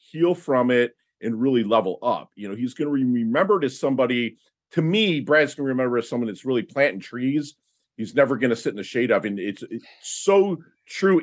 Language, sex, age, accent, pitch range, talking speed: English, male, 40-59, American, 110-155 Hz, 230 wpm